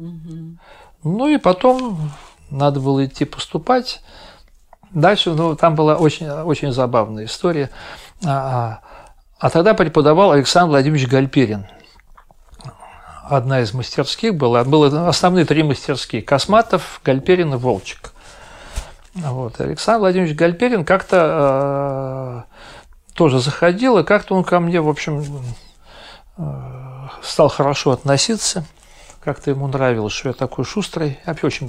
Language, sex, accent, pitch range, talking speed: Russian, male, native, 135-175 Hz, 120 wpm